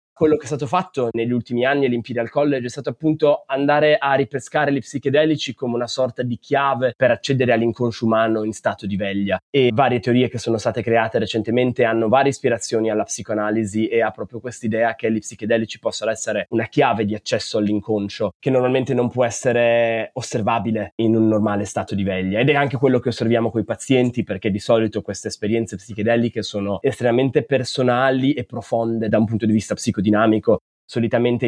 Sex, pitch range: male, 110-130 Hz